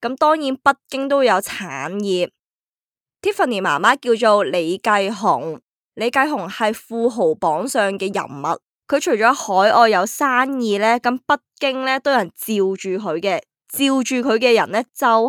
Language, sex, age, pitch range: Chinese, female, 20-39, 200-255 Hz